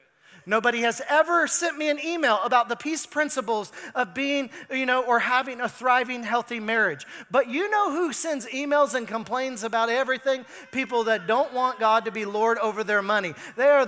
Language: English